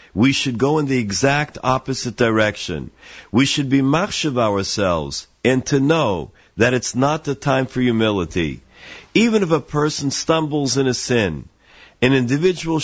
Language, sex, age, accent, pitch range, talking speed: English, male, 50-69, American, 120-155 Hz, 160 wpm